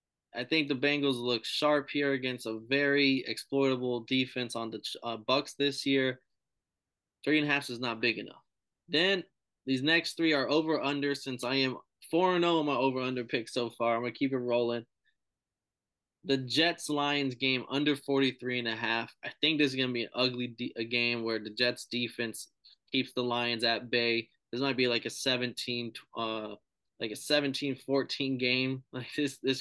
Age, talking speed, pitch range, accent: 20-39, 180 wpm, 115-140 Hz, American